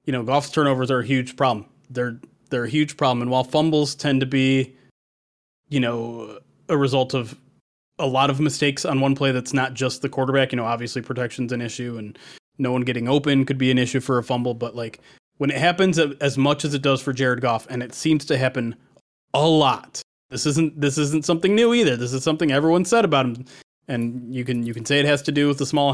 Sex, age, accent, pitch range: male, 20-39, American, 125-150 Hz